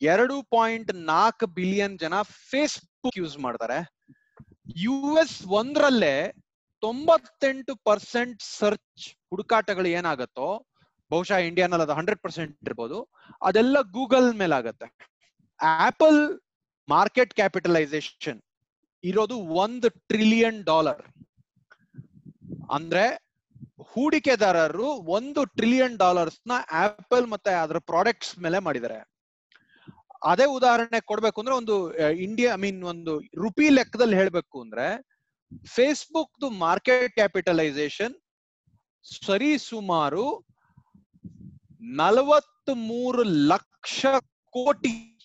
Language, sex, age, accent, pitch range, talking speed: Kannada, male, 30-49, native, 175-250 Hz, 85 wpm